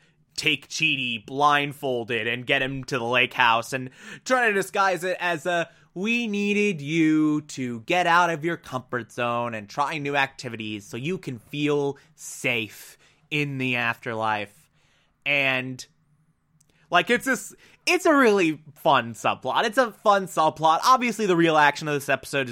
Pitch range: 125-155 Hz